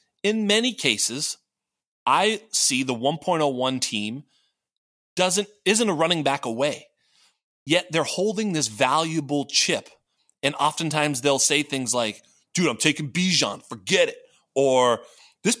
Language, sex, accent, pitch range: English, male, American, 150-225 Hz